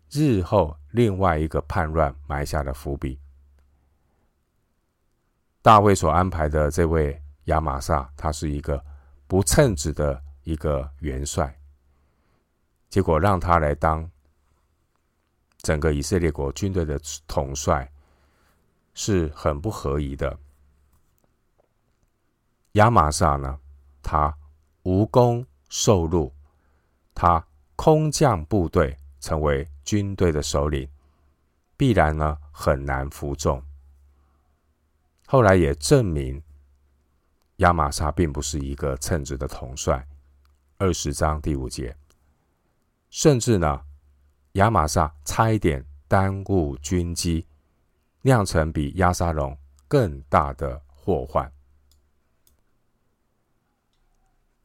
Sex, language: male, Chinese